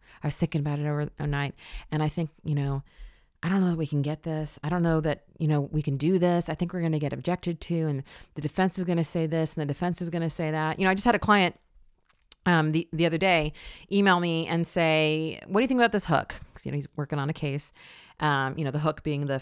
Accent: American